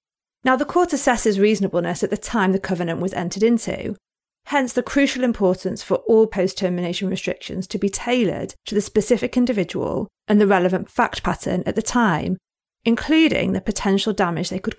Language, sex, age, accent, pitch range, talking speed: English, female, 40-59, British, 185-225 Hz, 170 wpm